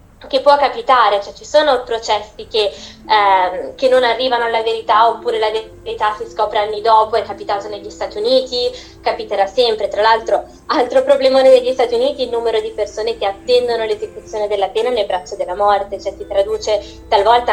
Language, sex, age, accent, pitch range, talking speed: Italian, female, 20-39, native, 215-265 Hz, 180 wpm